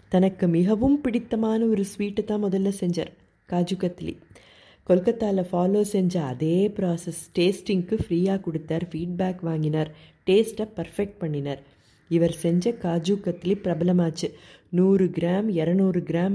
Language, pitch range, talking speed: Tamil, 155-195 Hz, 115 wpm